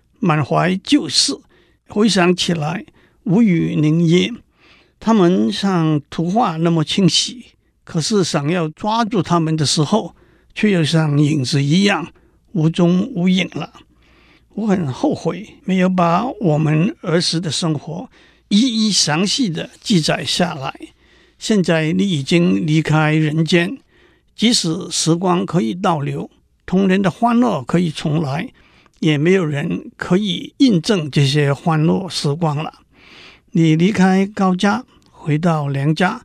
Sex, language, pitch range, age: male, Chinese, 155-195 Hz, 60-79